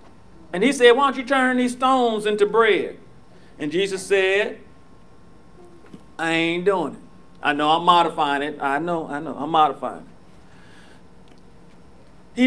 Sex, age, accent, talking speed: male, 40-59, American, 150 wpm